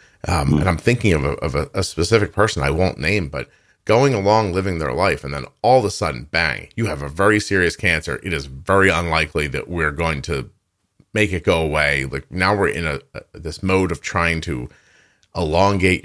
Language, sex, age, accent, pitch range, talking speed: English, male, 40-59, American, 80-110 Hz, 215 wpm